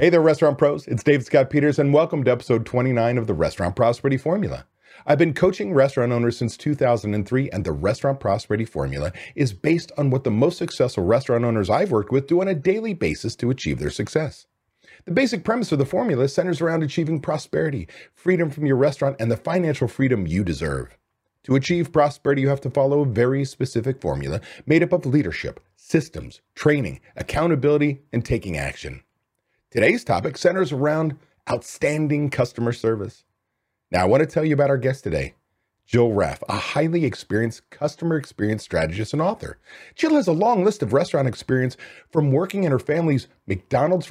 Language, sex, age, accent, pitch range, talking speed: English, male, 40-59, American, 115-160 Hz, 180 wpm